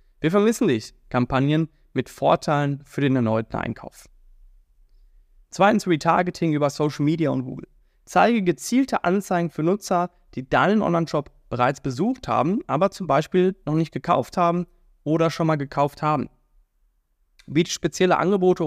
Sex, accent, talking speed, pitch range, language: male, German, 140 wpm, 130-180 Hz, German